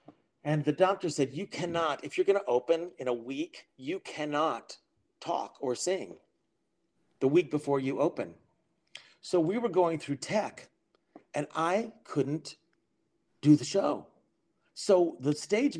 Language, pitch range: English, 140-180 Hz